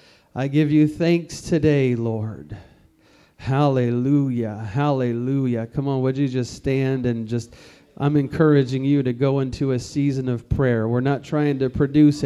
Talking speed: 150 wpm